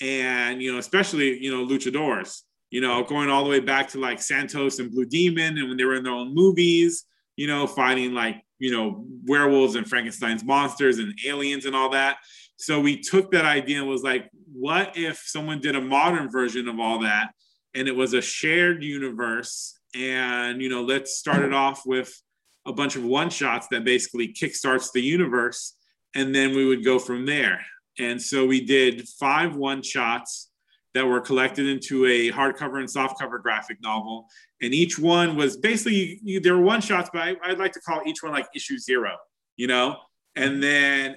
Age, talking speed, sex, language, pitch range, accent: 30-49, 195 wpm, male, English, 125-150 Hz, American